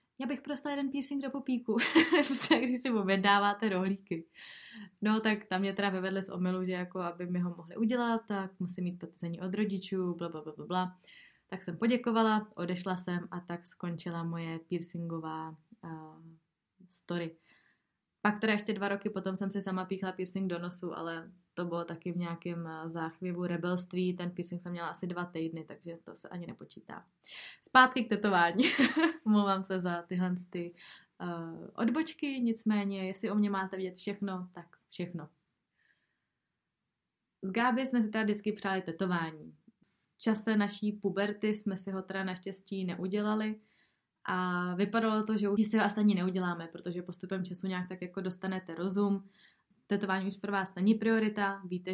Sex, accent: female, native